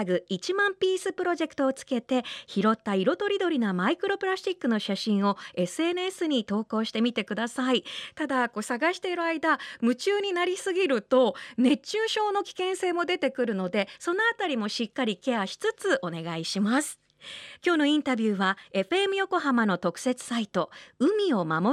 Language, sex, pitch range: Japanese, female, 200-315 Hz